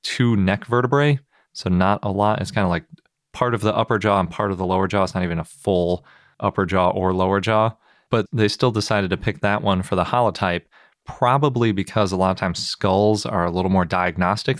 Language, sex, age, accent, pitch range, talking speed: English, male, 30-49, American, 95-115 Hz, 225 wpm